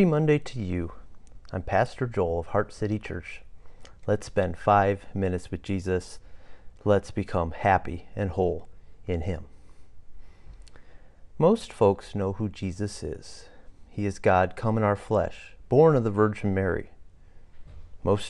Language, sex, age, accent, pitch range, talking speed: English, male, 40-59, American, 90-110 Hz, 140 wpm